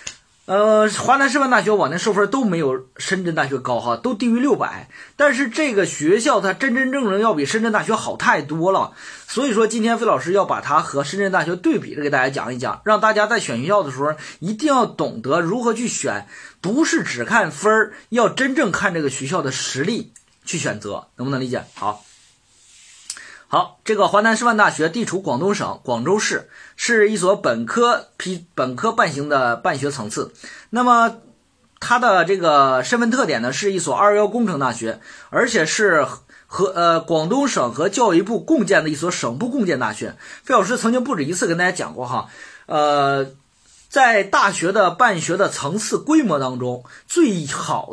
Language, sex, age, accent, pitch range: Chinese, male, 20-39, native, 155-235 Hz